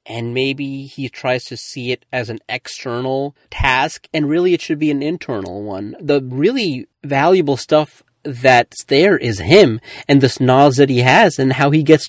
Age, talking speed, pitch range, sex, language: 30-49, 185 wpm, 120-155 Hz, male, English